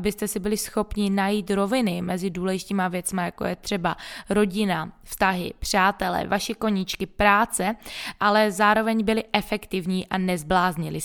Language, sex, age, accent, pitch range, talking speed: Czech, female, 20-39, native, 190-225 Hz, 130 wpm